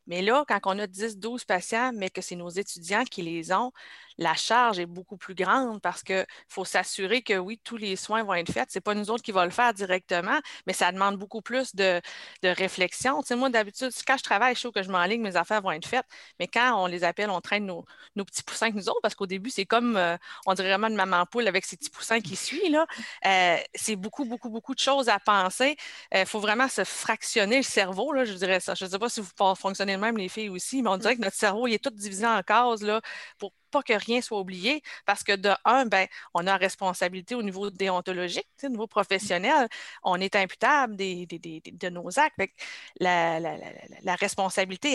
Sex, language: female, French